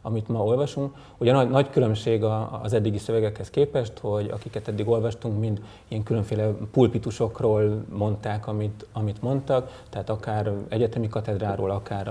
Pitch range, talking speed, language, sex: 105-115 Hz, 135 wpm, Hungarian, male